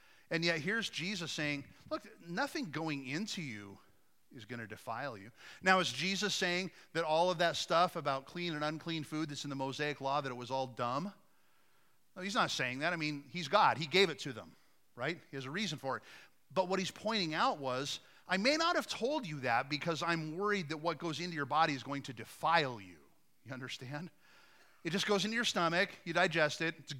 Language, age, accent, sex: English, 40-59, American, male